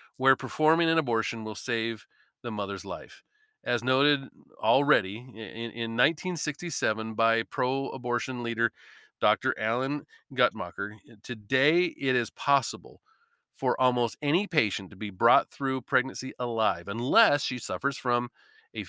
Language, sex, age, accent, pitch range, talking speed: English, male, 40-59, American, 120-145 Hz, 125 wpm